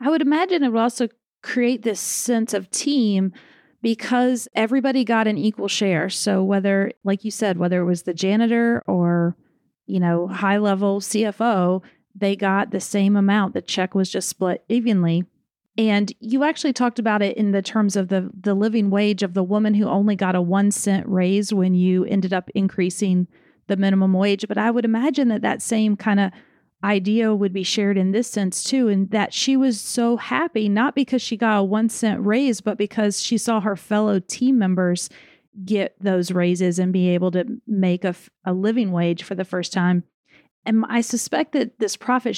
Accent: American